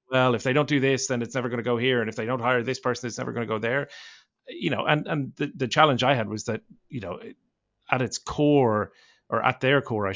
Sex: male